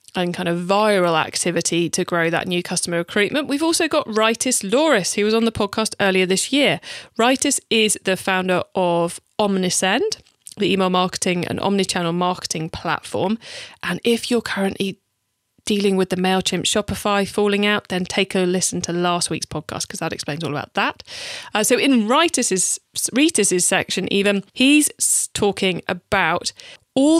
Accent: British